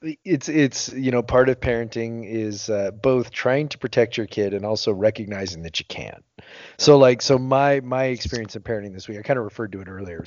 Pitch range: 105-130 Hz